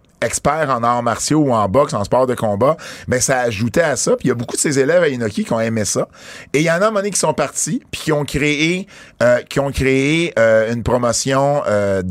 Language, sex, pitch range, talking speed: French, male, 115-150 Hz, 270 wpm